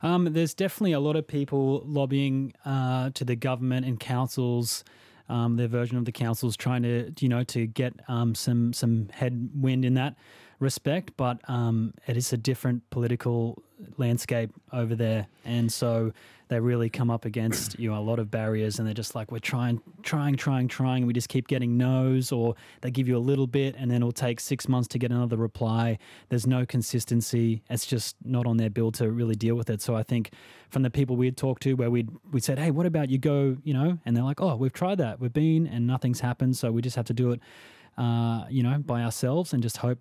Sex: male